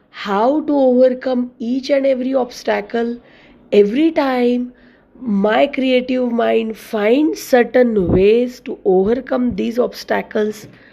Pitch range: 210-255 Hz